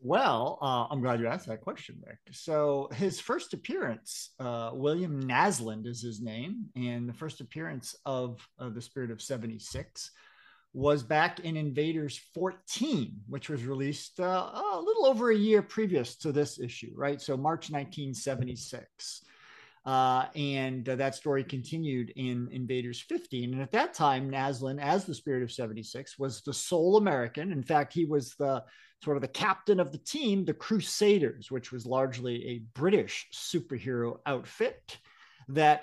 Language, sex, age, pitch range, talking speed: English, male, 50-69, 125-170 Hz, 160 wpm